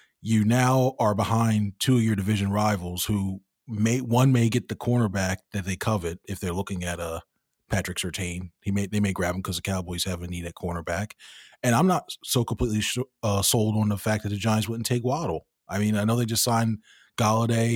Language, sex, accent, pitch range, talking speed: English, male, American, 100-115 Hz, 225 wpm